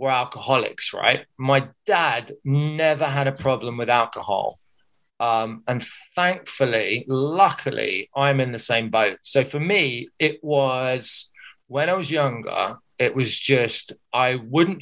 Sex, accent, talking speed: male, British, 140 wpm